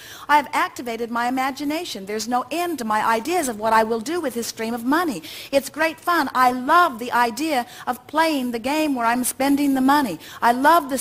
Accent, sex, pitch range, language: American, female, 215-290 Hz, English